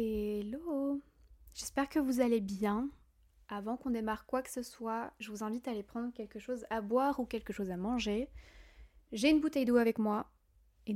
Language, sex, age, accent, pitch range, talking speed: French, female, 20-39, French, 205-255 Hz, 190 wpm